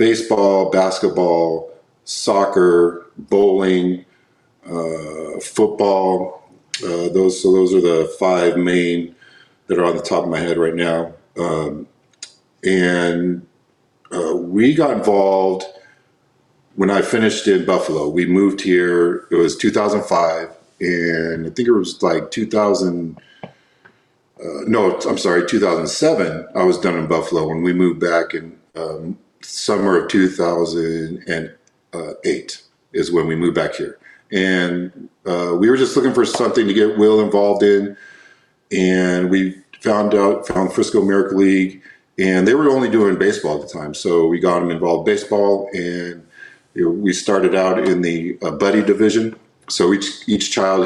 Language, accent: English, American